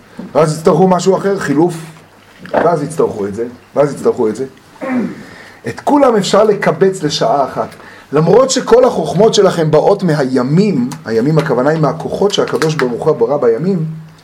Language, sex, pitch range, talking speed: Hebrew, male, 150-220 Hz, 135 wpm